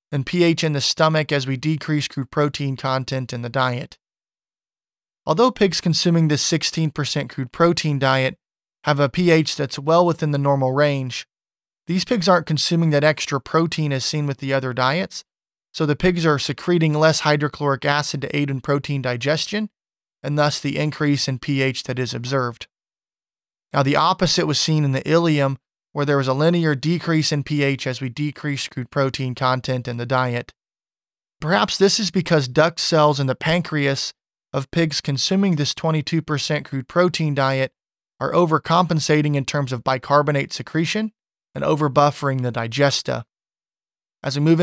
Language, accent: English, American